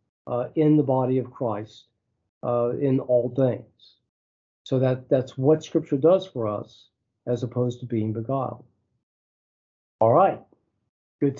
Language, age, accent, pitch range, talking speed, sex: English, 50-69, American, 115-145 Hz, 135 wpm, male